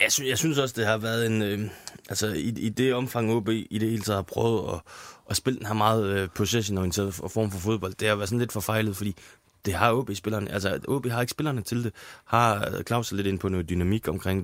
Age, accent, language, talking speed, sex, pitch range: 20-39, native, Danish, 235 wpm, male, 100-115 Hz